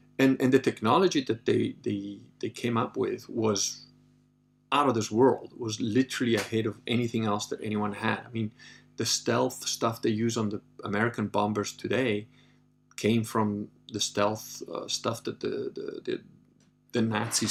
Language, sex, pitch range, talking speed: English, male, 105-120 Hz, 170 wpm